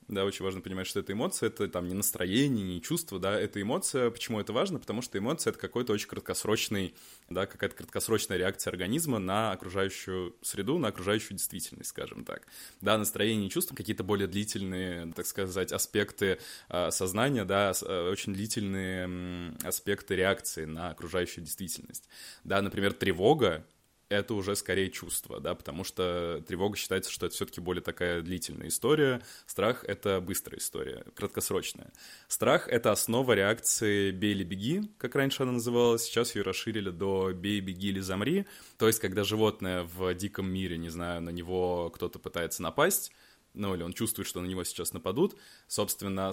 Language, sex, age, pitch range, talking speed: Russian, male, 20-39, 90-110 Hz, 165 wpm